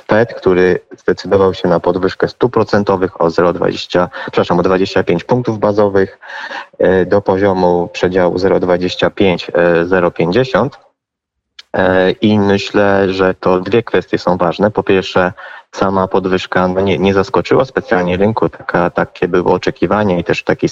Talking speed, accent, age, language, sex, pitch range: 120 wpm, native, 20-39, Polish, male, 90-100 Hz